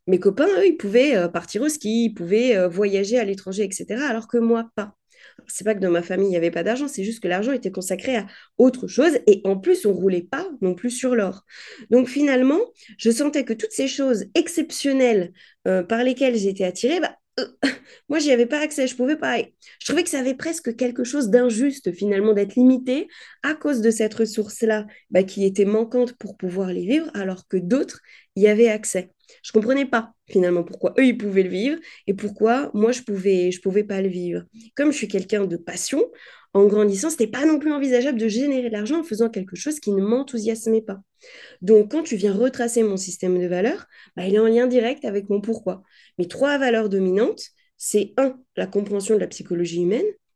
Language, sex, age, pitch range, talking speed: French, female, 20-39, 195-260 Hz, 215 wpm